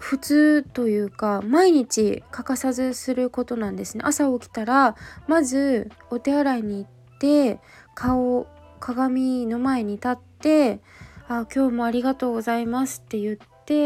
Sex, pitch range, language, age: female, 210-260 Hz, Japanese, 20-39